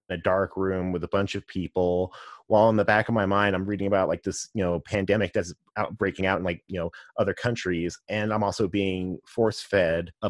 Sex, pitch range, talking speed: male, 95-120 Hz, 240 wpm